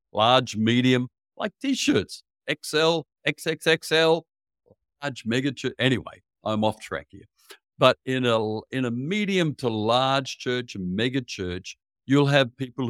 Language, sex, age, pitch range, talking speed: English, male, 60-79, 100-140 Hz, 135 wpm